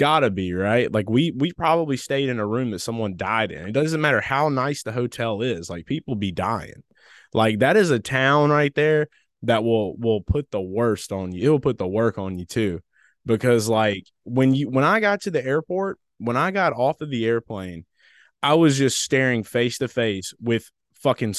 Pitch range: 110-140 Hz